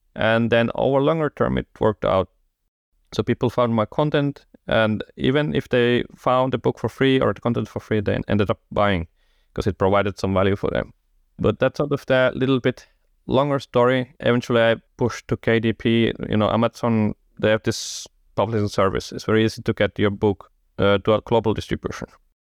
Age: 30-49